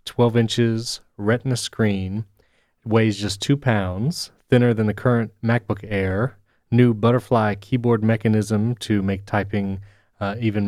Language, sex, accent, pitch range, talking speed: English, male, American, 100-120 Hz, 130 wpm